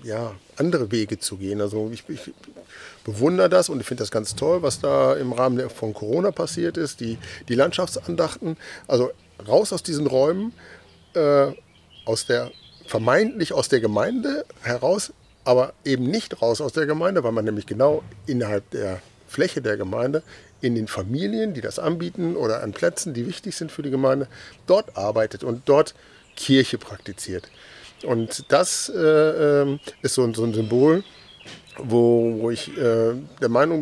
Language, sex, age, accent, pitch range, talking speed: German, male, 50-69, German, 110-145 Hz, 160 wpm